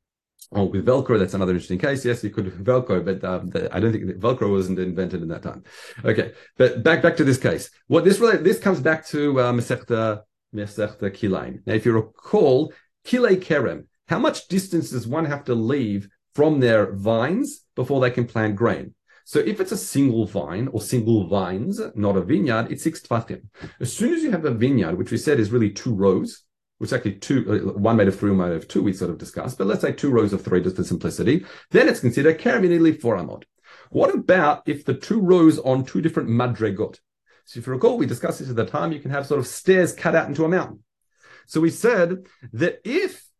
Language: English